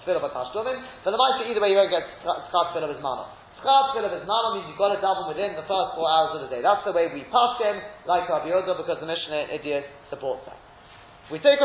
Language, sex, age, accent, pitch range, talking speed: English, male, 30-49, British, 165-245 Hz, 260 wpm